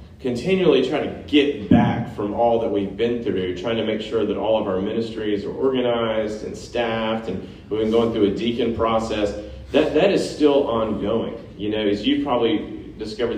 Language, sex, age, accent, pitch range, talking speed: English, male, 30-49, American, 105-135 Hz, 195 wpm